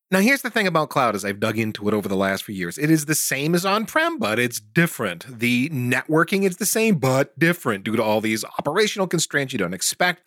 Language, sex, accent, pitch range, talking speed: English, male, American, 115-175 Hz, 240 wpm